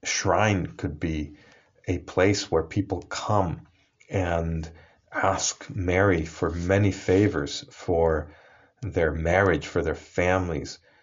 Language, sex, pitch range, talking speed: English, male, 85-100 Hz, 110 wpm